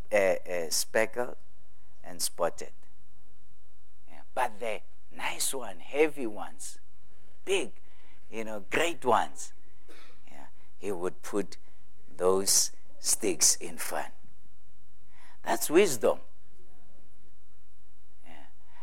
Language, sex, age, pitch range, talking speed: English, male, 60-79, 90-110 Hz, 90 wpm